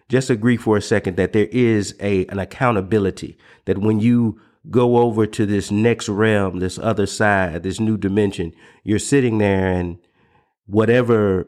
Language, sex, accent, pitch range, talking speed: English, male, American, 95-110 Hz, 160 wpm